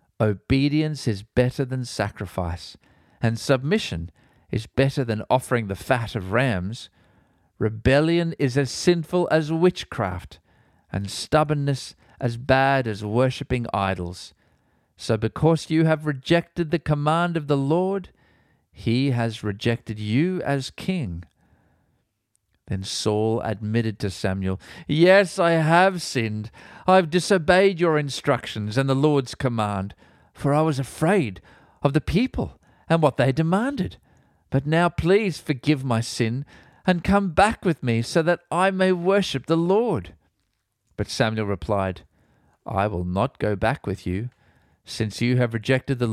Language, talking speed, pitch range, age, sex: English, 140 wpm, 105-160 Hz, 50-69, male